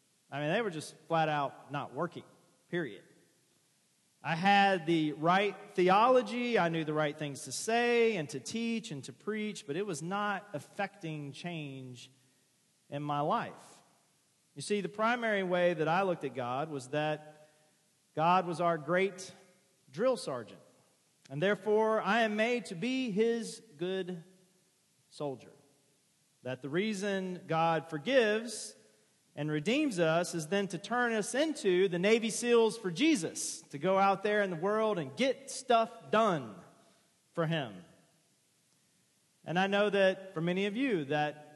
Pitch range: 150-200 Hz